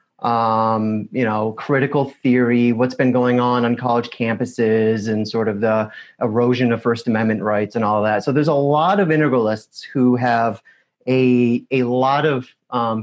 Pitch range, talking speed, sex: 120-145 Hz, 170 wpm, male